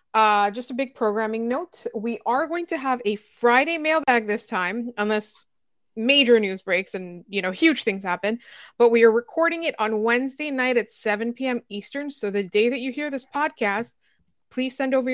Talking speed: 195 wpm